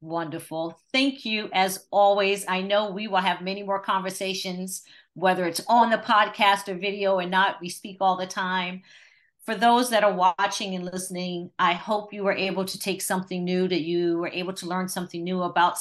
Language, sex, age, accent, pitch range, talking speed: English, female, 40-59, American, 170-200 Hz, 195 wpm